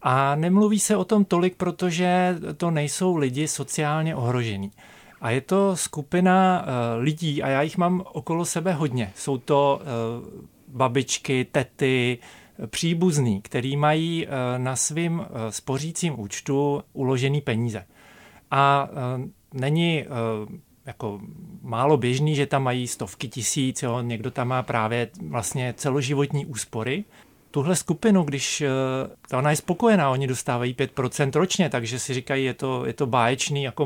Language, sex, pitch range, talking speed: Czech, male, 125-165 Hz, 130 wpm